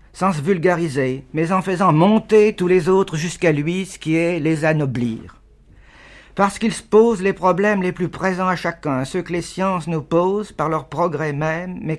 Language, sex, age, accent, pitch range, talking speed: French, male, 50-69, French, 150-190 Hz, 195 wpm